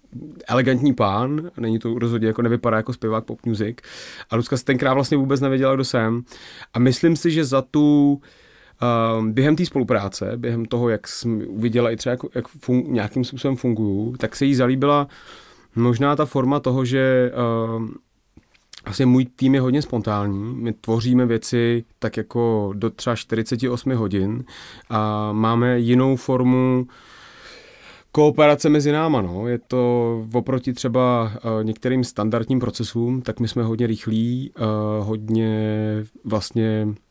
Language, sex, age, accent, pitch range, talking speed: Czech, male, 30-49, native, 110-125 Hz, 150 wpm